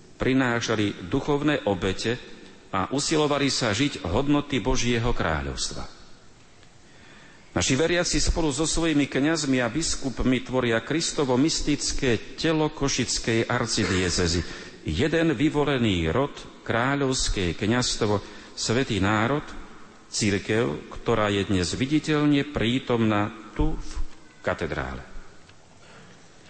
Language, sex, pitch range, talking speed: Slovak, male, 105-135 Hz, 90 wpm